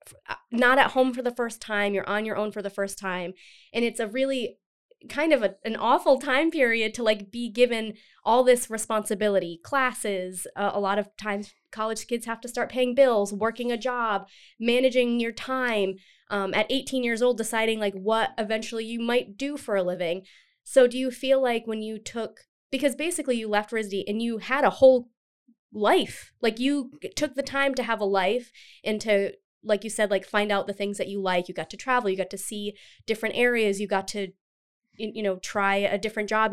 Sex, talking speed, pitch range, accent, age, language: female, 205 wpm, 200-250 Hz, American, 20-39, English